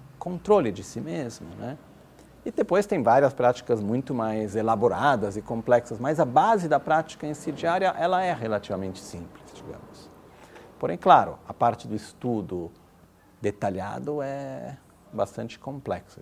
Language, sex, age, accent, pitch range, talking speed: Italian, male, 50-69, Brazilian, 100-130 Hz, 135 wpm